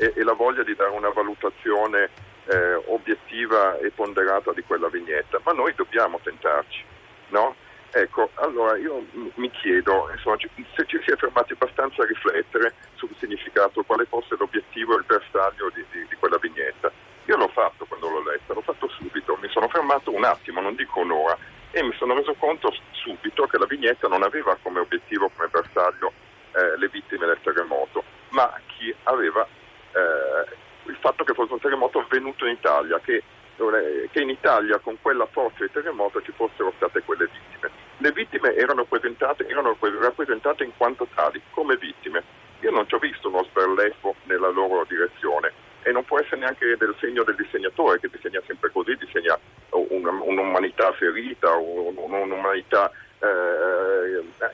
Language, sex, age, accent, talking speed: Italian, male, 50-69, native, 165 wpm